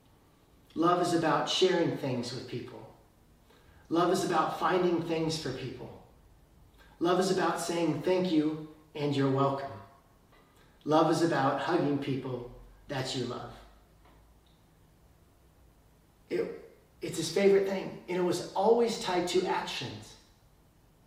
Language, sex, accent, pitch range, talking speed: English, male, American, 125-165 Hz, 120 wpm